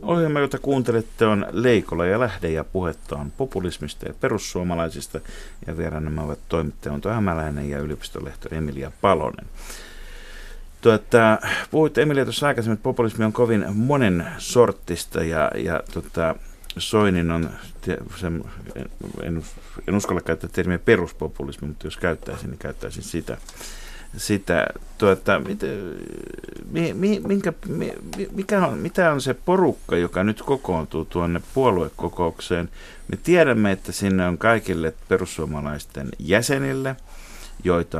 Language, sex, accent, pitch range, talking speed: Finnish, male, native, 85-120 Hz, 110 wpm